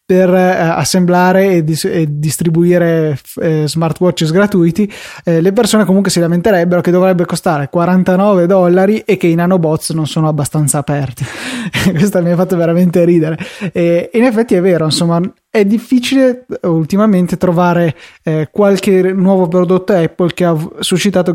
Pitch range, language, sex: 160-185 Hz, Italian, male